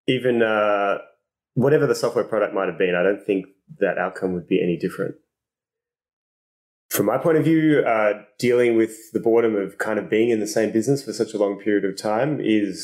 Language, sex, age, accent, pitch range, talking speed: English, male, 20-39, Australian, 95-115 Hz, 205 wpm